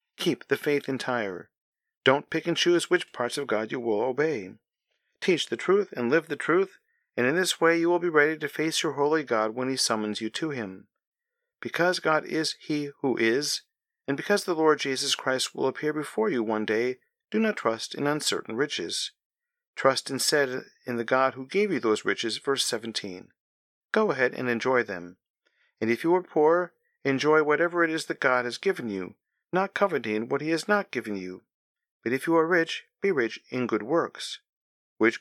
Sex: male